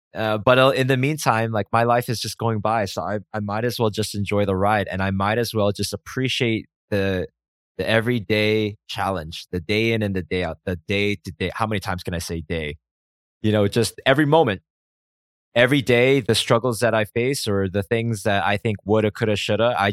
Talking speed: 220 wpm